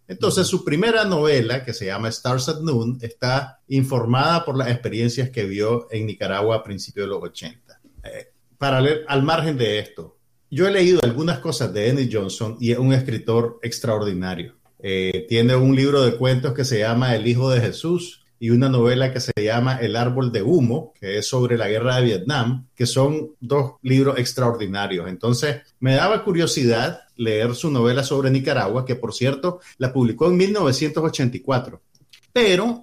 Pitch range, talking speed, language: 120-155 Hz, 175 wpm, Spanish